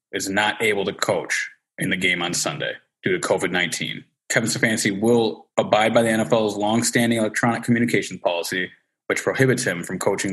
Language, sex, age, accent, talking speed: English, male, 20-39, American, 170 wpm